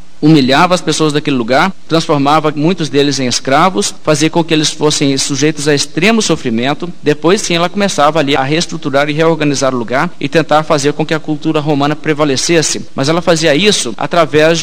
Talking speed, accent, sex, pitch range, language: 180 wpm, Brazilian, male, 145-175 Hz, Portuguese